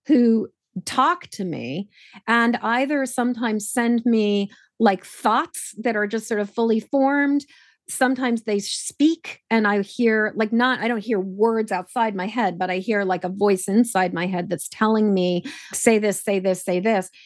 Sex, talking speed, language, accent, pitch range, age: female, 175 wpm, English, American, 195-240 Hz, 30-49